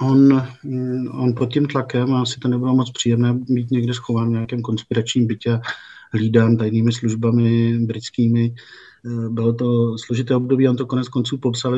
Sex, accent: male, native